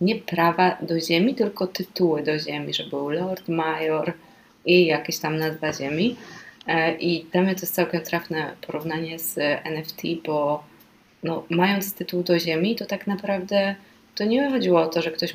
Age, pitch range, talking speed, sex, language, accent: 20-39, 155-175 Hz, 170 wpm, female, Polish, native